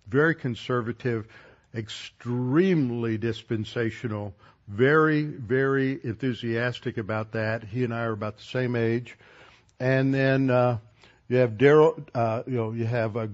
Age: 60-79